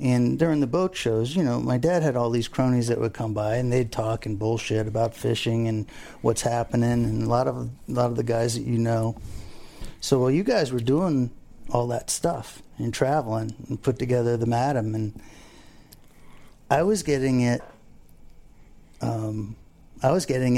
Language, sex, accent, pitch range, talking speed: English, male, American, 115-135 Hz, 190 wpm